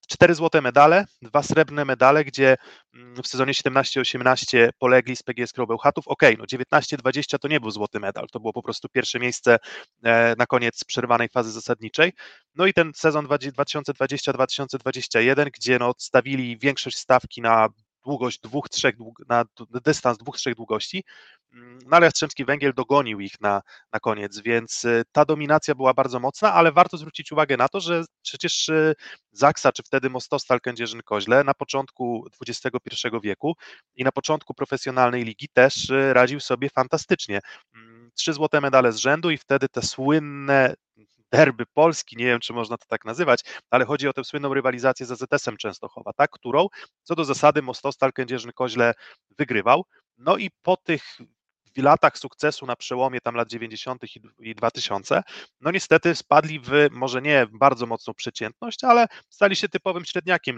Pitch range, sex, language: 120-150 Hz, male, Polish